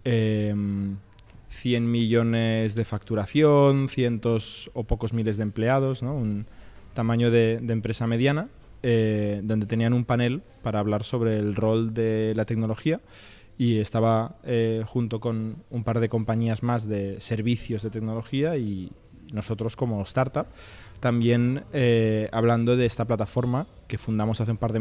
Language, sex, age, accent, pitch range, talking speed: Spanish, male, 20-39, Spanish, 110-120 Hz, 145 wpm